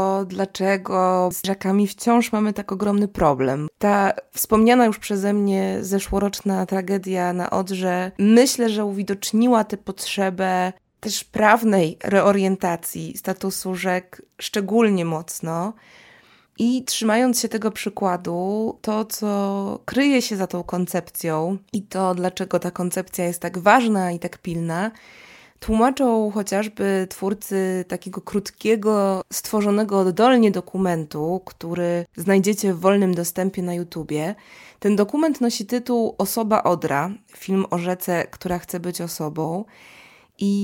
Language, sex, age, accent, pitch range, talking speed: Polish, female, 20-39, native, 180-210 Hz, 120 wpm